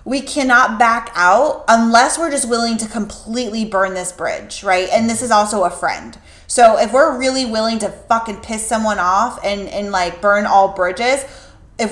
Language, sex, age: English, female, 20-39